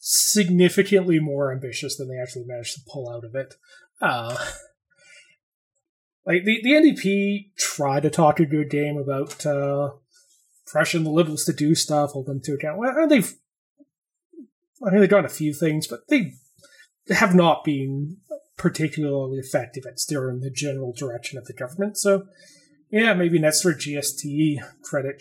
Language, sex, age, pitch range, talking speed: English, male, 30-49, 145-190 Hz, 160 wpm